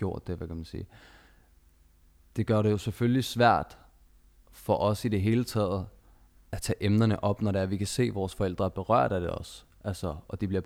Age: 20-39